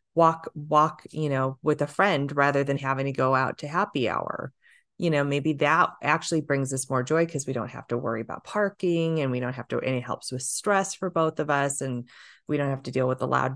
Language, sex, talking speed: English, female, 250 wpm